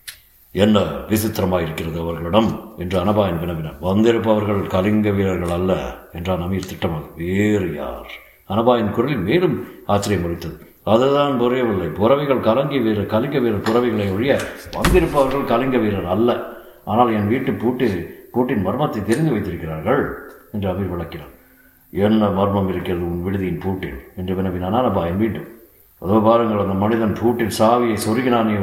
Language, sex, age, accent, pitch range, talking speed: Tamil, male, 50-69, native, 90-120 Hz, 125 wpm